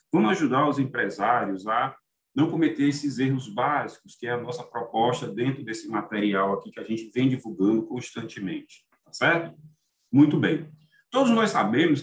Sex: male